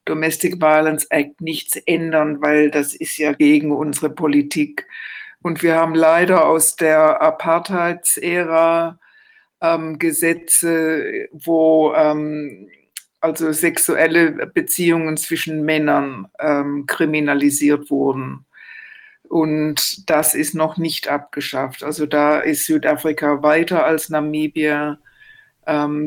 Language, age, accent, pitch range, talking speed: German, 60-79, German, 150-165 Hz, 105 wpm